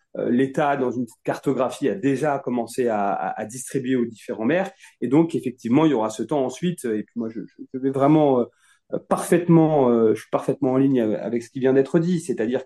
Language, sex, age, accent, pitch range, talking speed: French, male, 30-49, French, 125-160 Hz, 215 wpm